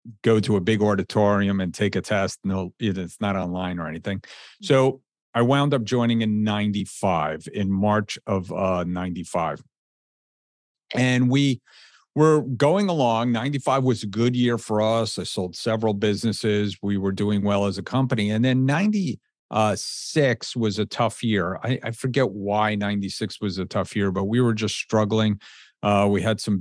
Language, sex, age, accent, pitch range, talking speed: English, male, 50-69, American, 100-120 Hz, 170 wpm